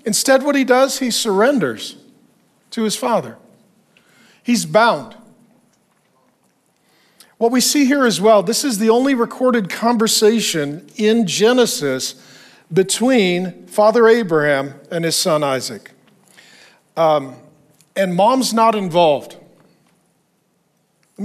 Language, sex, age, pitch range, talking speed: English, male, 50-69, 170-235 Hz, 105 wpm